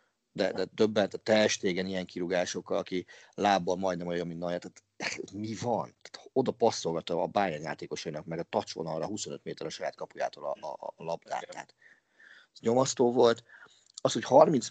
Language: Hungarian